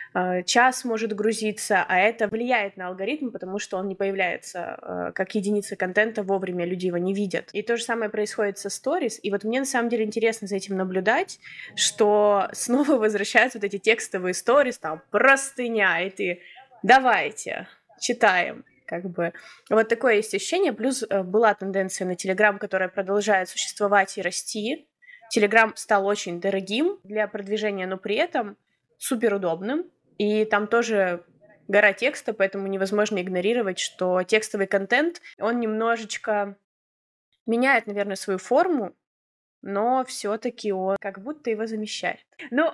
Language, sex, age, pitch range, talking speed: Russian, female, 20-39, 195-240 Hz, 145 wpm